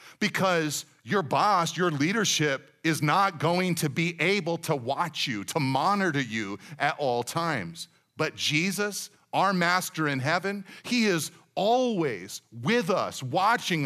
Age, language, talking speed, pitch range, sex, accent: 40-59, English, 140 wpm, 135-170 Hz, male, American